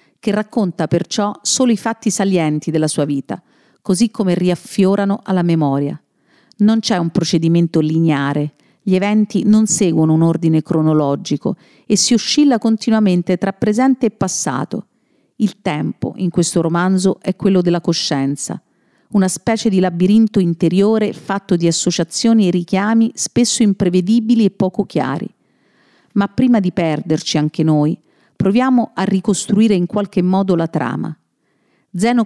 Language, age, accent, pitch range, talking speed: Italian, 50-69, native, 170-215 Hz, 140 wpm